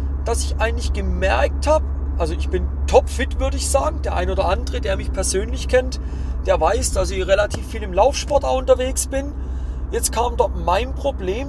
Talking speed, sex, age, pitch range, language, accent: 195 wpm, male, 40-59, 70-80 Hz, German, German